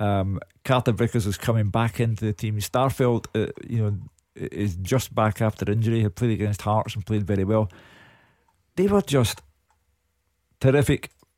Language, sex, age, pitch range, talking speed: English, male, 50-69, 105-130 Hz, 150 wpm